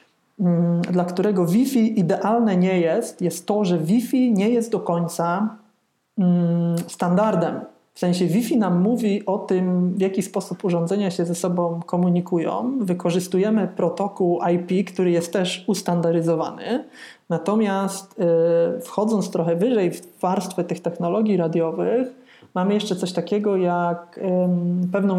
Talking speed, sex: 125 wpm, male